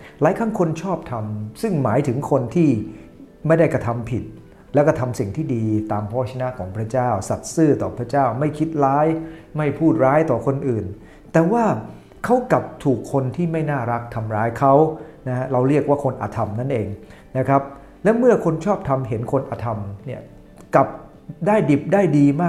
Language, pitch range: English, 120-165 Hz